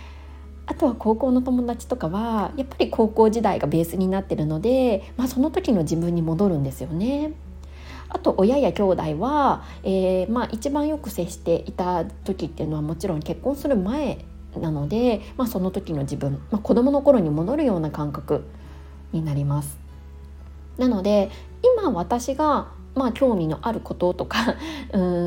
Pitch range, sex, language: 155-240 Hz, female, Japanese